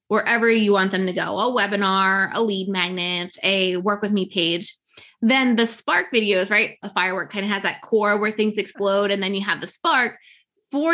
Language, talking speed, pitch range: English, 210 wpm, 195-250 Hz